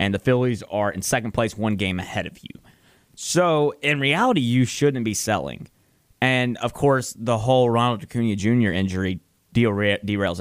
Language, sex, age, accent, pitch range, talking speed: English, male, 20-39, American, 105-130 Hz, 165 wpm